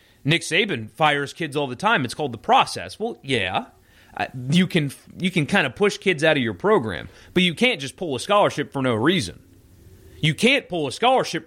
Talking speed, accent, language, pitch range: 210 wpm, American, English, 110-165 Hz